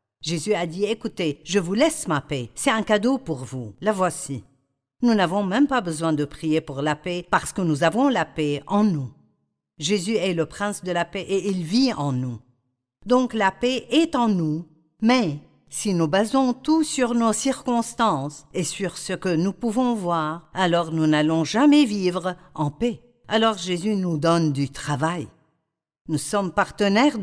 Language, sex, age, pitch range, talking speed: French, female, 50-69, 150-235 Hz, 185 wpm